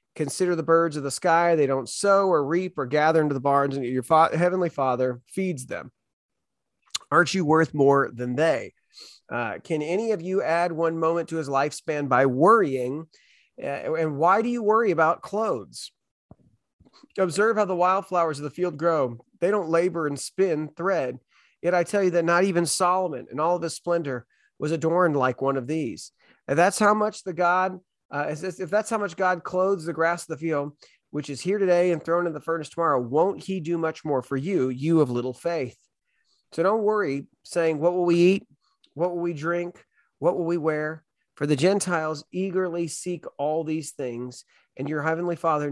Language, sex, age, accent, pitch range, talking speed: English, male, 30-49, American, 140-175 Hz, 195 wpm